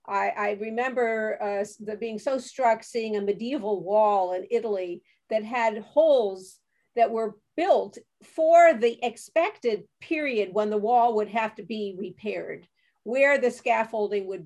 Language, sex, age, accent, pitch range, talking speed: English, female, 50-69, American, 215-280 Hz, 150 wpm